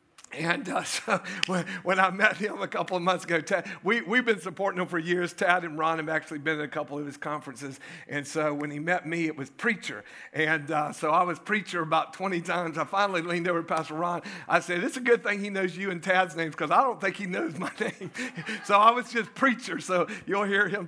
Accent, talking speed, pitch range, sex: American, 250 wpm, 155-185 Hz, male